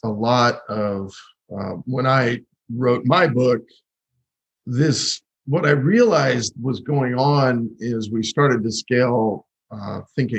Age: 50-69